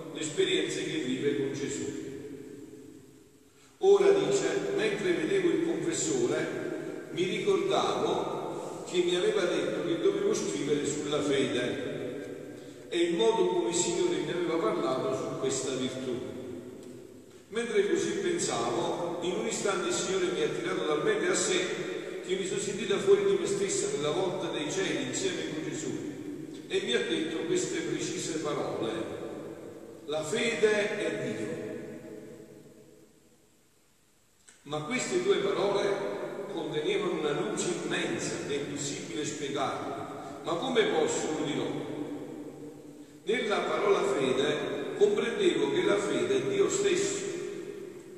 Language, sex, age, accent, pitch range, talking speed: Italian, male, 50-69, native, 335-395 Hz, 130 wpm